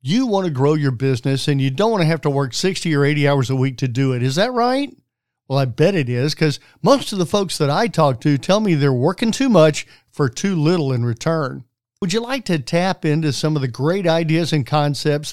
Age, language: 50-69, English